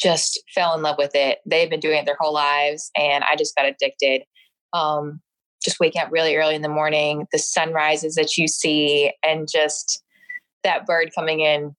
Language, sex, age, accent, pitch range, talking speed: English, female, 20-39, American, 150-185 Hz, 195 wpm